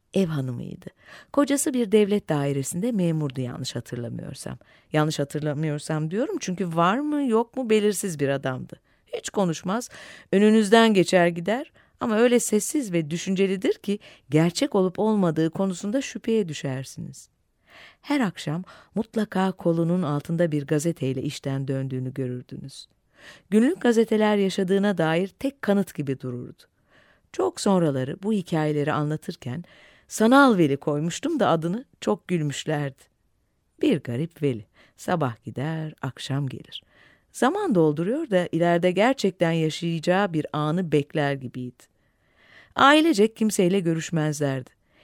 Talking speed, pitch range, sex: 115 wpm, 145-210 Hz, female